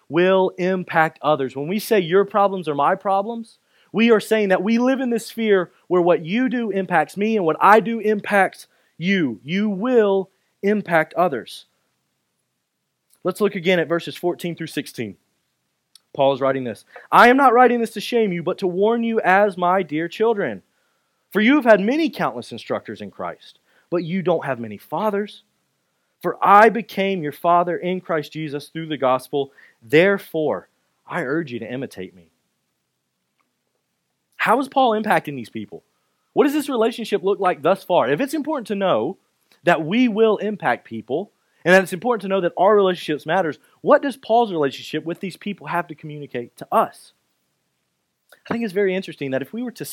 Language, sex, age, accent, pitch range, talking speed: English, male, 30-49, American, 150-215 Hz, 185 wpm